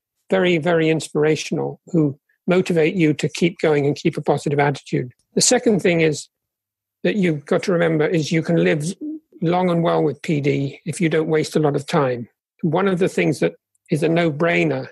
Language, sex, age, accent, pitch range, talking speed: English, male, 50-69, British, 150-180 Hz, 195 wpm